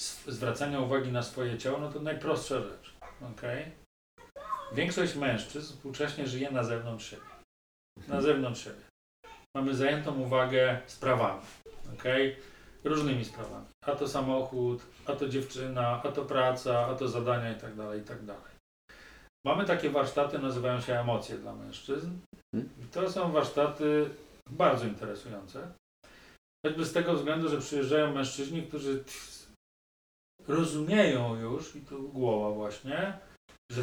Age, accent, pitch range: 40-59, native, 120-145 Hz